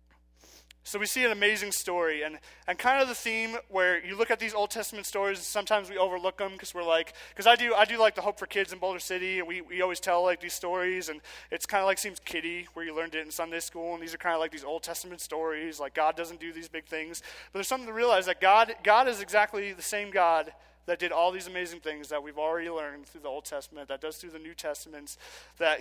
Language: English